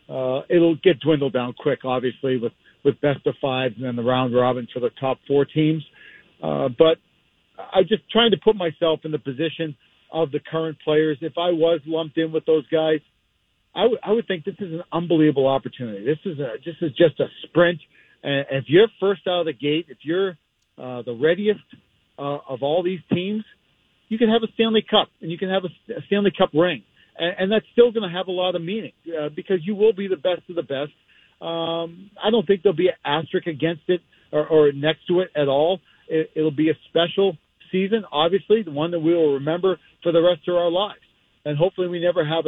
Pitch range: 145-185 Hz